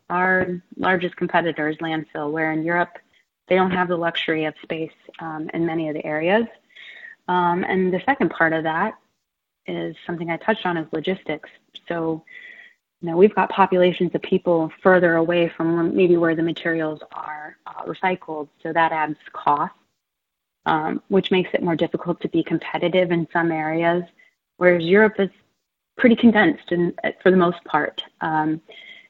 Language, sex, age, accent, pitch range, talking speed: English, female, 30-49, American, 160-185 Hz, 165 wpm